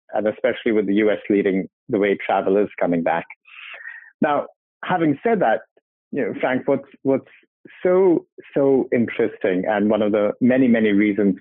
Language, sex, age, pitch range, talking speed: English, male, 60-79, 105-150 Hz, 165 wpm